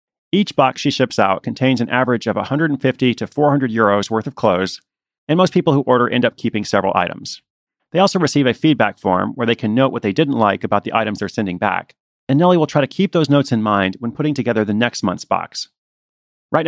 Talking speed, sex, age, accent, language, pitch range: 230 wpm, male, 30-49, American, English, 110-140 Hz